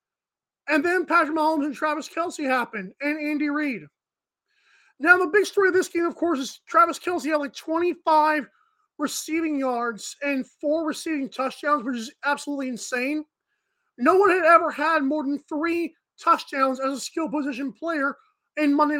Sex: male